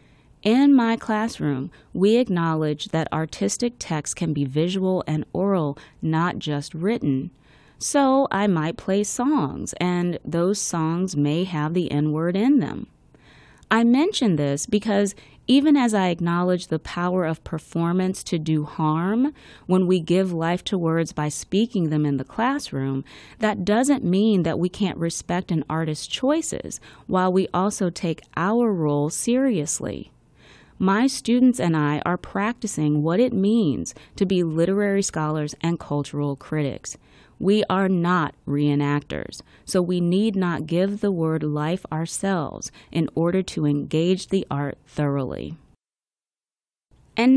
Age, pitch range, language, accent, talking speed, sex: 30-49, 155-200 Hz, English, American, 140 wpm, female